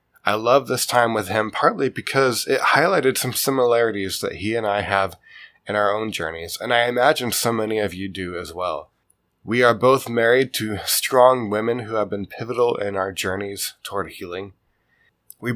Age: 20-39